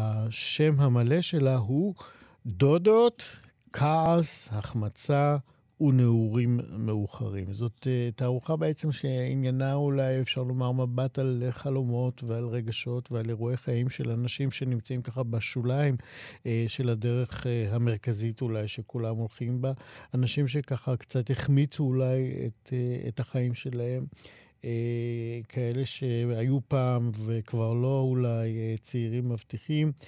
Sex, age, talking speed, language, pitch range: male, 50-69, 110 wpm, Hebrew, 115-135 Hz